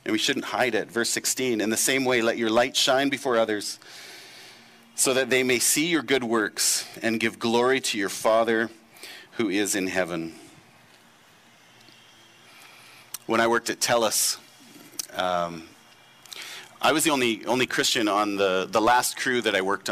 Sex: male